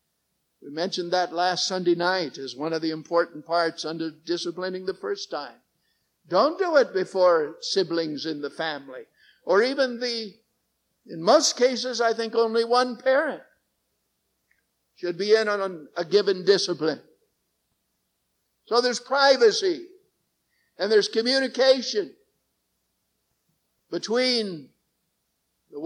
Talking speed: 120 wpm